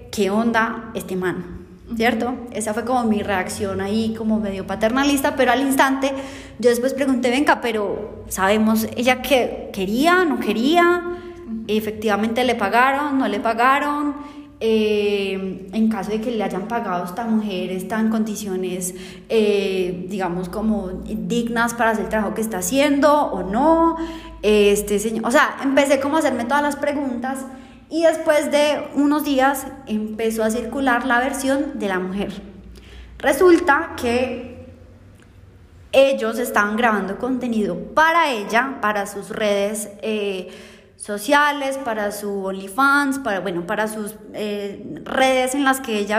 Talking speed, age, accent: 140 wpm, 20-39, Colombian